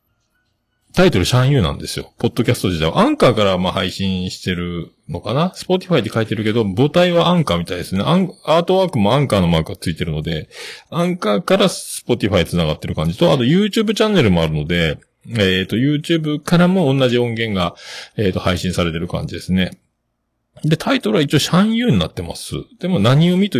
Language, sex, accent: Japanese, male, native